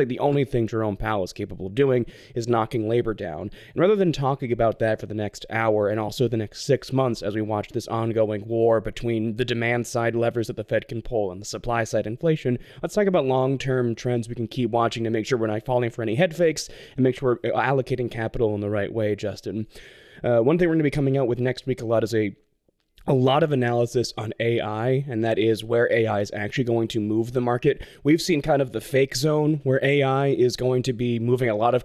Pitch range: 110-130 Hz